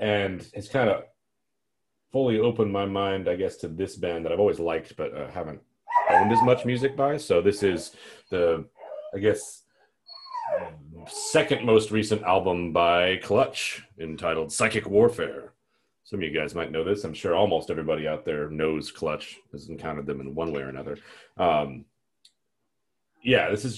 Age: 30-49